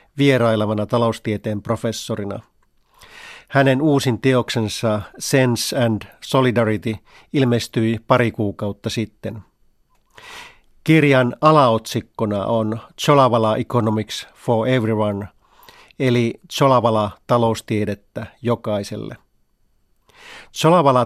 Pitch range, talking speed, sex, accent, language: 110-130 Hz, 70 wpm, male, native, Finnish